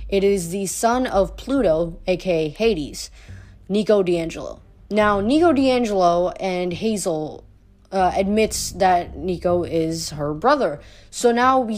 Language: English